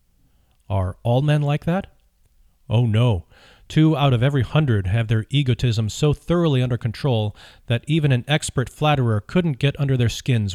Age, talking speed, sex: 40-59, 165 wpm, male